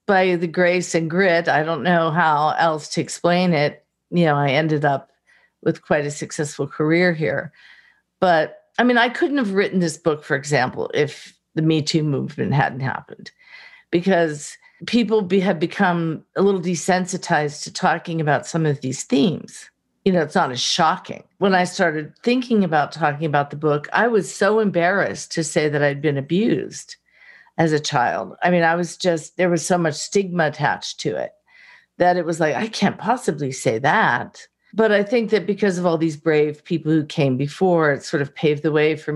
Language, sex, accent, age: English, female, American, 50-69